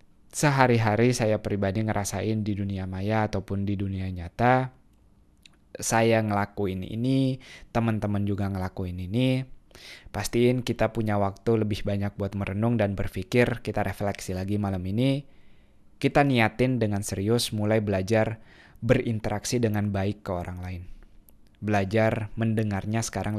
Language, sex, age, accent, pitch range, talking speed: Indonesian, male, 20-39, native, 100-120 Hz, 125 wpm